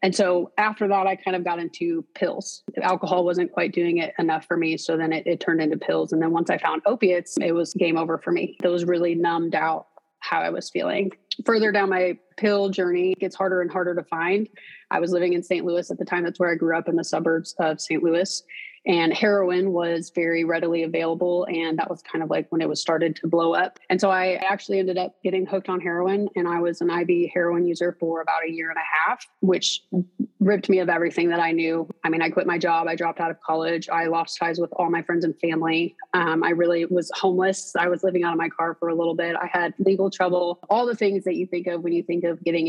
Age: 30-49